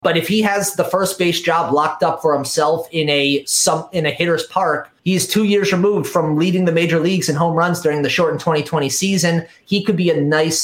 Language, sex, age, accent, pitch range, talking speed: English, male, 30-49, American, 145-185 Hz, 230 wpm